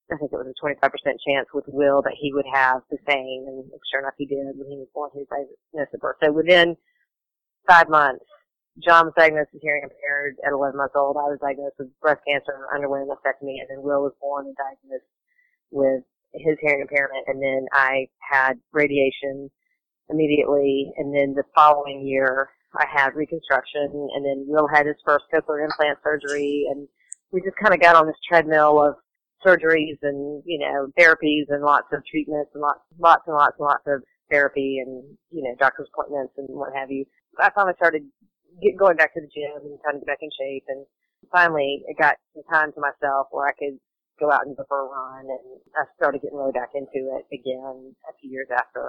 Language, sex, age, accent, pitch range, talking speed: English, female, 40-59, American, 135-150 Hz, 210 wpm